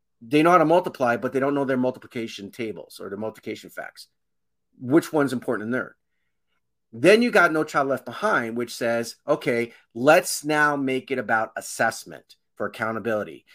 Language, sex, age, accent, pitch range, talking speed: English, male, 40-59, American, 115-160 Hz, 175 wpm